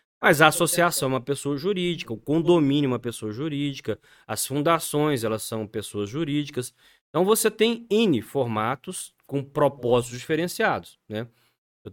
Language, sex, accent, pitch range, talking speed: Portuguese, male, Brazilian, 125-190 Hz, 145 wpm